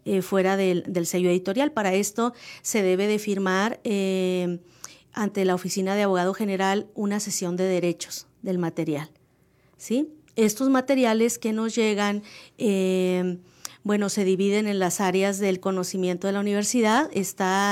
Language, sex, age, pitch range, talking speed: Spanish, female, 40-59, 185-220 Hz, 145 wpm